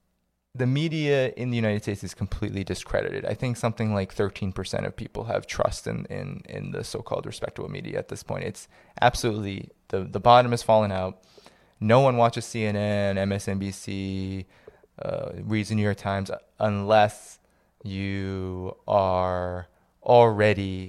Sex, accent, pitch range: male, American, 95-115 Hz